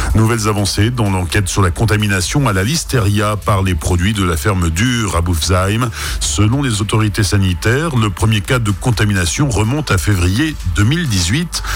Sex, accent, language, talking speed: male, French, French, 165 wpm